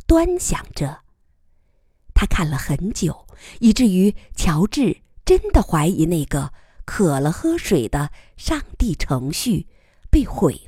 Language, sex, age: Chinese, female, 50-69